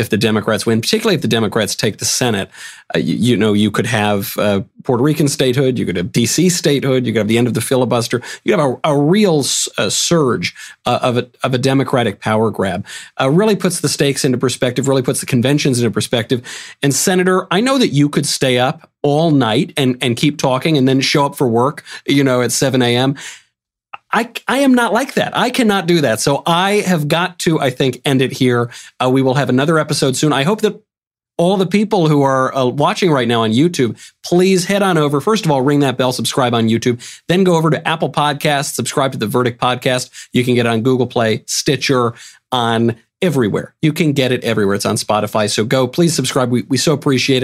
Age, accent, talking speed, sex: 40-59, American, 225 wpm, male